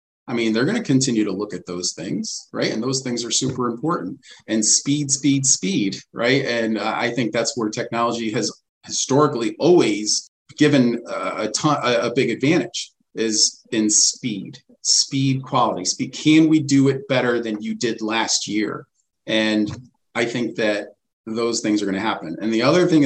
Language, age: English, 40-59